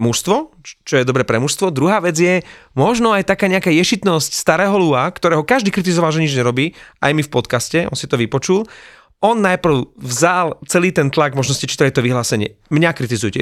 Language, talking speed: Slovak, 190 wpm